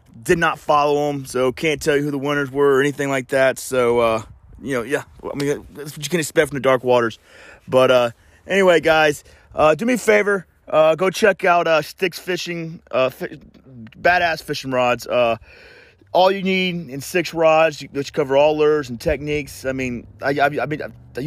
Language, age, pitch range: English, 30-49, 125-160 Hz